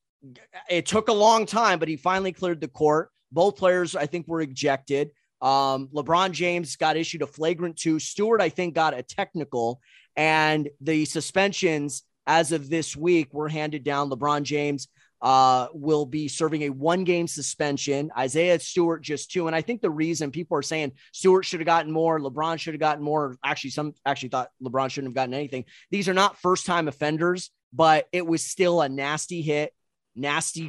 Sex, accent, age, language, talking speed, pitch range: male, American, 30-49, English, 185 wpm, 145-175 Hz